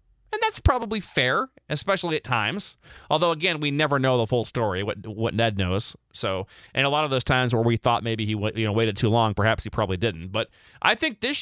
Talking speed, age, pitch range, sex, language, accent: 235 wpm, 30-49, 110-150 Hz, male, English, American